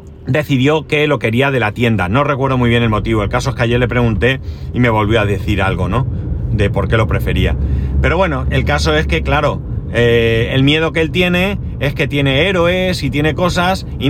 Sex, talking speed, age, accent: male, 225 wpm, 30-49, Spanish